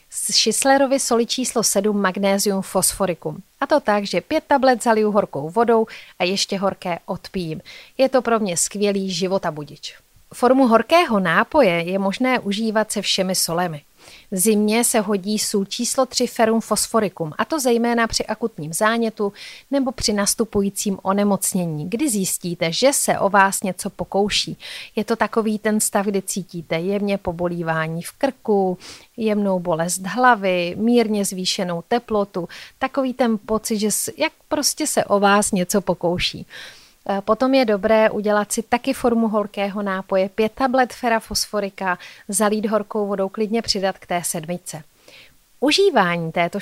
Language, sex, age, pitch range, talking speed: Czech, female, 30-49, 190-230 Hz, 145 wpm